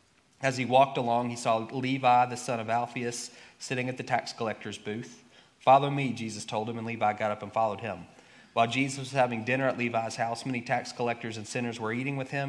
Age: 30-49